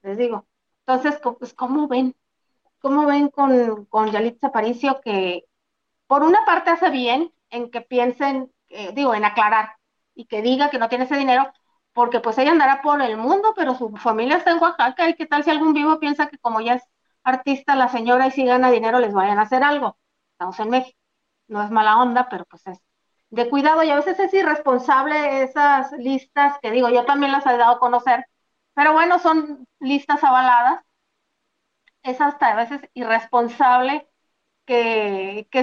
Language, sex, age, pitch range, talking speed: Spanish, female, 40-59, 230-285 Hz, 185 wpm